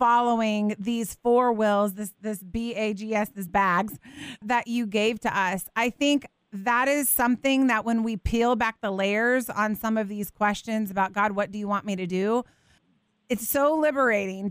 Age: 30-49